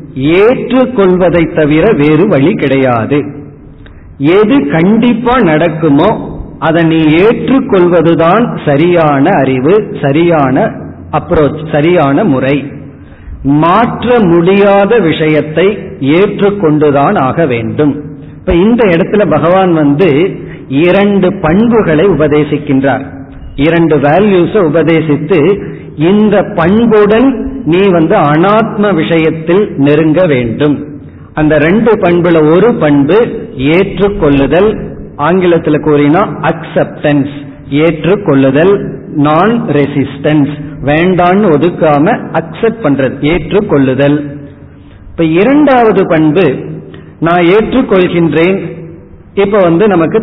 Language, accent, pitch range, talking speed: Tamil, native, 145-190 Hz, 75 wpm